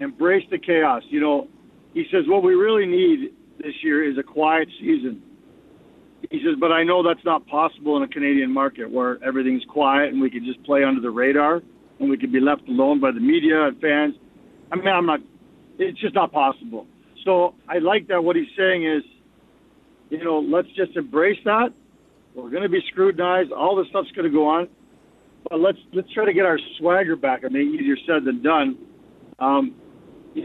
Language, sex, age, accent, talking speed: English, male, 50-69, American, 195 wpm